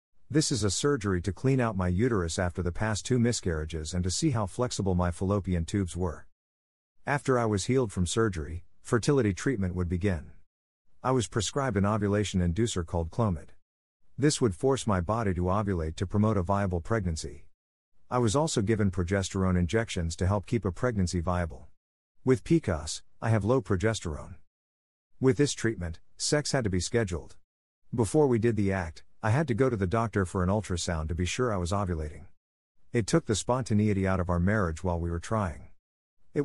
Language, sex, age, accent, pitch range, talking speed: English, male, 50-69, American, 85-115 Hz, 185 wpm